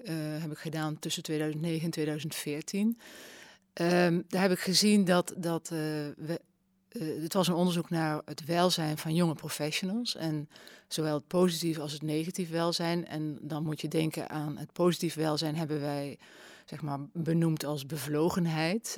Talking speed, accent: 165 wpm, Dutch